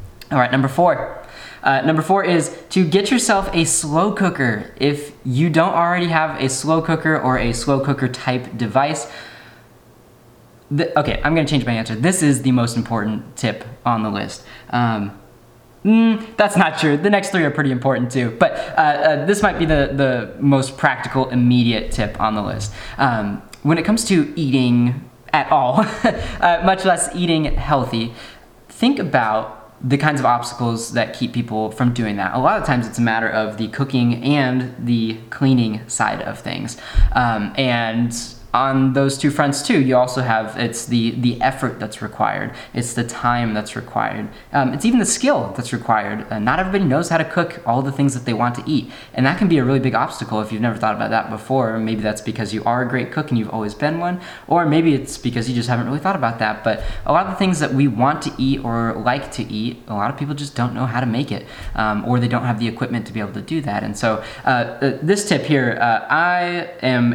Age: 20-39